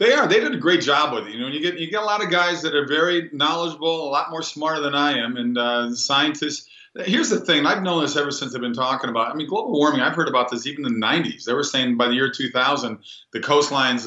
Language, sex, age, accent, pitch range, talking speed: English, male, 40-59, American, 120-150 Hz, 280 wpm